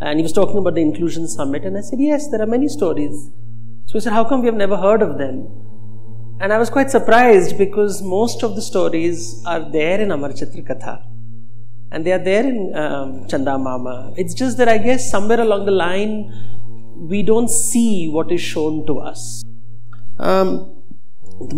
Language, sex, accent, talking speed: Hindi, male, native, 195 wpm